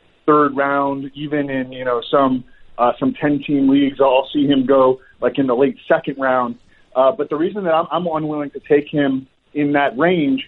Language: English